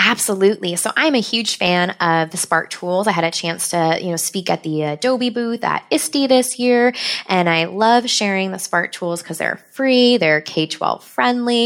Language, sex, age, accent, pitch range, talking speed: English, female, 20-39, American, 165-220 Hz, 200 wpm